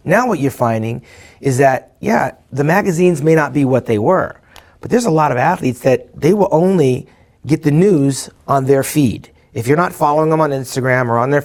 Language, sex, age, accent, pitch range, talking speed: English, male, 30-49, American, 120-150 Hz, 215 wpm